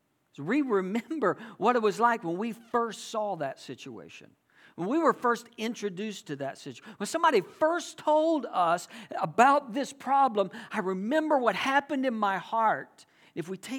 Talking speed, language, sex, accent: 155 wpm, English, male, American